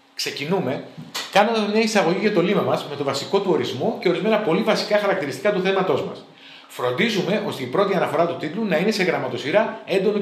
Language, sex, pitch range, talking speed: Greek, male, 160-215 Hz, 195 wpm